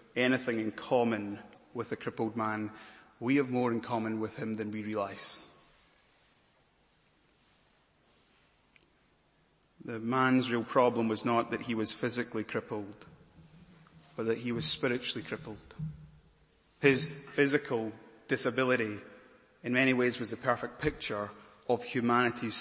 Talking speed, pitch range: 120 wpm, 115-145 Hz